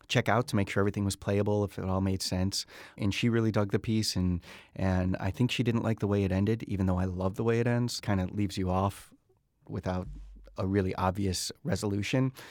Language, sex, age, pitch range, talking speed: English, male, 30-49, 95-115 Hz, 230 wpm